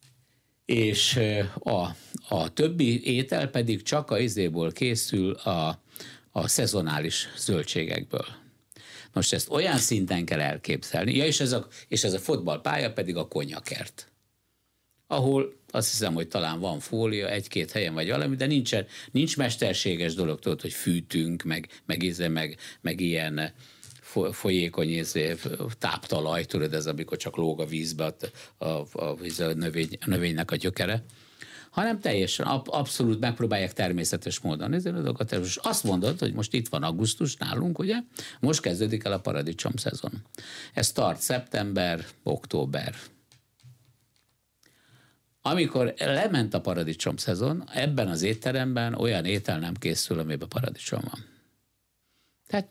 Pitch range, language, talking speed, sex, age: 90-125 Hz, Hungarian, 130 wpm, male, 60-79